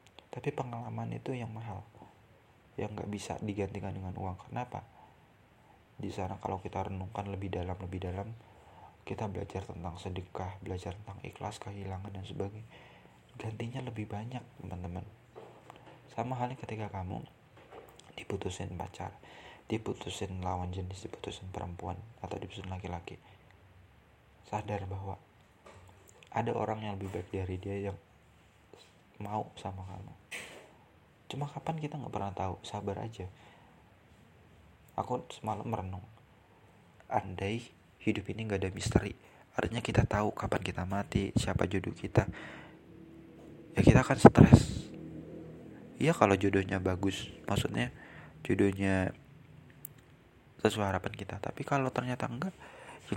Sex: male